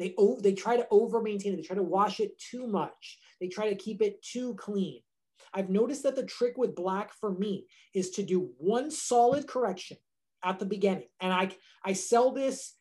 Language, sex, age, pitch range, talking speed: English, male, 30-49, 185-235 Hz, 205 wpm